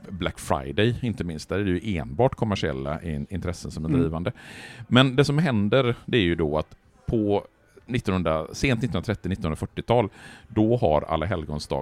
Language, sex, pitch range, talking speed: Swedish, male, 75-115 Hz, 155 wpm